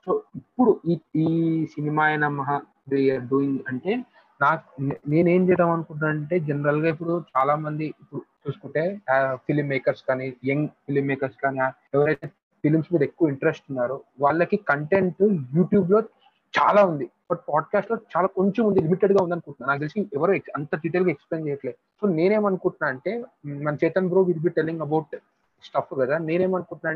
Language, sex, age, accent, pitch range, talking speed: Telugu, male, 30-49, native, 140-175 Hz, 140 wpm